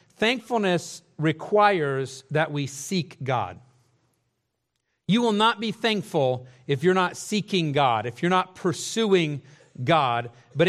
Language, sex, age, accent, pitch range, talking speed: English, male, 40-59, American, 140-185 Hz, 125 wpm